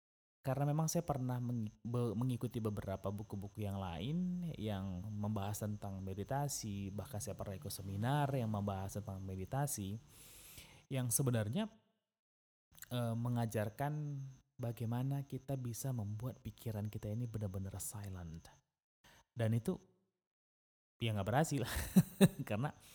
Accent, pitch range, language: native, 100-130 Hz, Indonesian